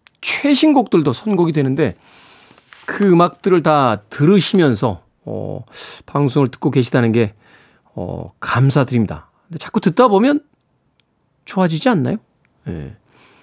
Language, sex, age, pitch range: Korean, male, 40-59, 130-220 Hz